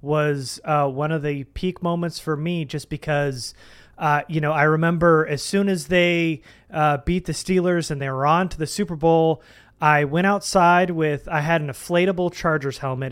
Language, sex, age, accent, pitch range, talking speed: English, male, 30-49, American, 150-180 Hz, 190 wpm